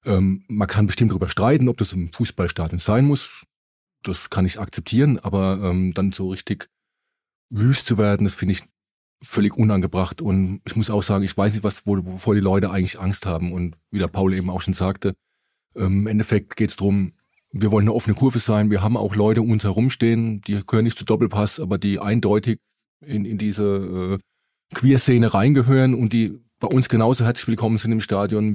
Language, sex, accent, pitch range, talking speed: German, male, German, 95-115 Hz, 200 wpm